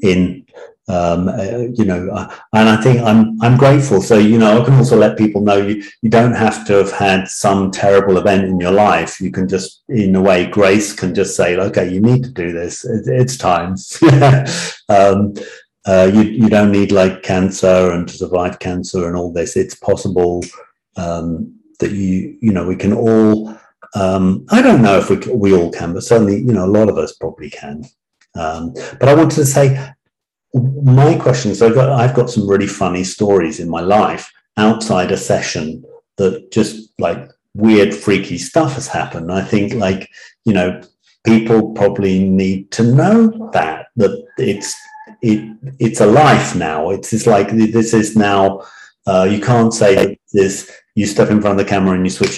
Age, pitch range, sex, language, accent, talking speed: 50-69, 95-115 Hz, male, English, British, 190 wpm